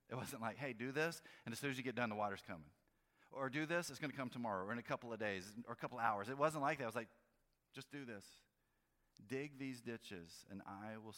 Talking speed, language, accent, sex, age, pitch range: 275 wpm, English, American, male, 40-59, 85-110 Hz